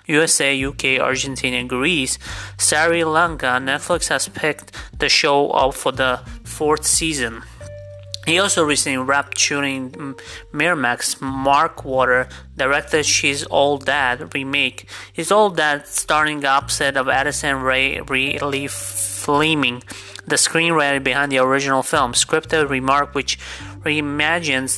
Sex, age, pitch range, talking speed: male, 30-49, 125-145 Hz, 125 wpm